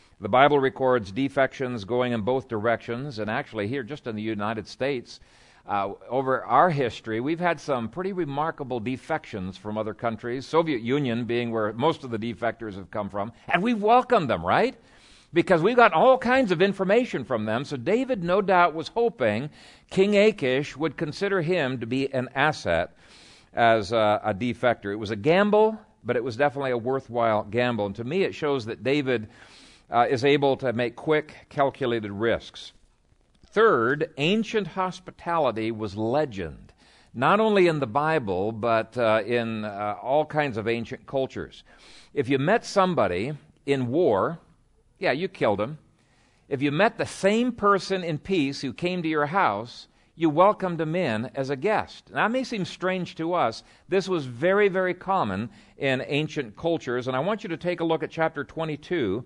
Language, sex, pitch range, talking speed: English, male, 115-170 Hz, 175 wpm